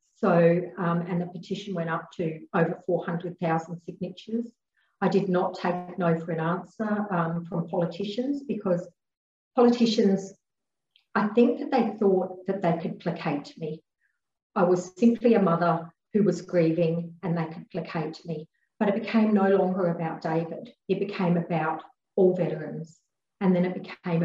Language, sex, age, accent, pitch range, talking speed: English, female, 40-59, Australian, 170-195 Hz, 155 wpm